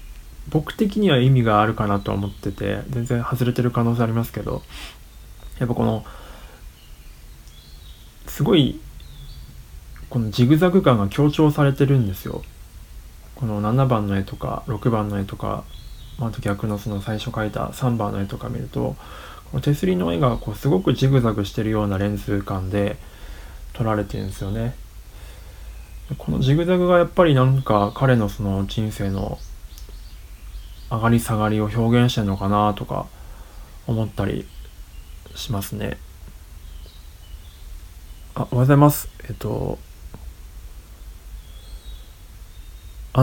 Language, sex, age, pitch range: Japanese, male, 20-39, 80-120 Hz